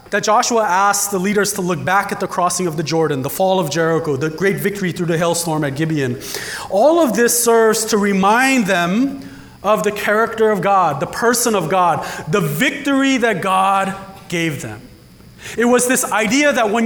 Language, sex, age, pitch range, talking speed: English, male, 30-49, 195-260 Hz, 190 wpm